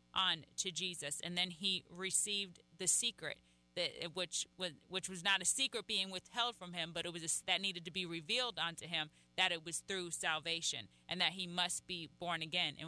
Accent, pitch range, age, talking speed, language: American, 165-200 Hz, 30-49, 205 wpm, English